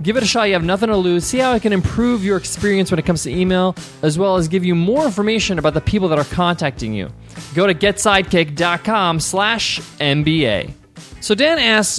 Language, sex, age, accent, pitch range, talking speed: English, male, 20-39, American, 140-190 Hz, 215 wpm